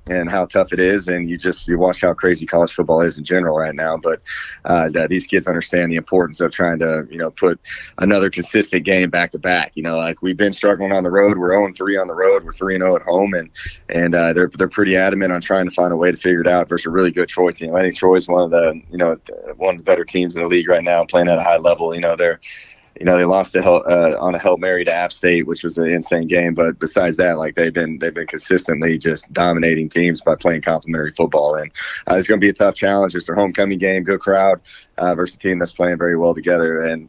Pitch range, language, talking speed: 85-95 Hz, English, 270 wpm